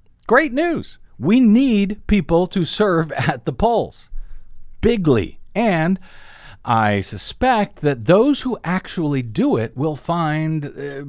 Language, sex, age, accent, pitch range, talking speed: English, male, 50-69, American, 115-155 Hz, 120 wpm